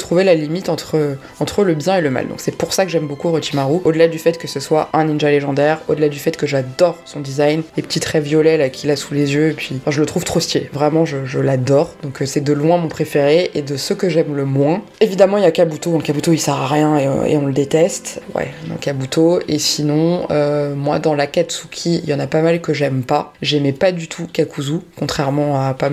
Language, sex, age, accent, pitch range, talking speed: French, female, 20-39, French, 145-170 Hz, 260 wpm